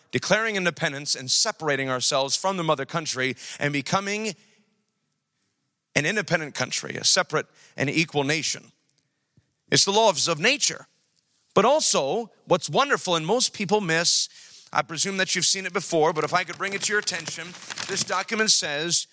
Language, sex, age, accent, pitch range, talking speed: English, male, 40-59, American, 135-185 Hz, 160 wpm